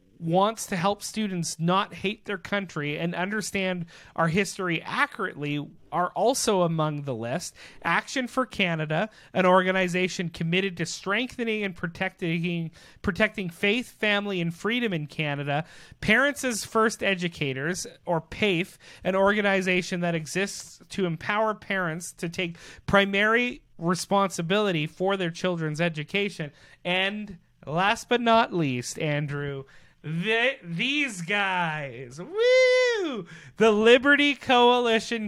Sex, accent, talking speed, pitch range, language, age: male, American, 115 wpm, 165-205 Hz, English, 30-49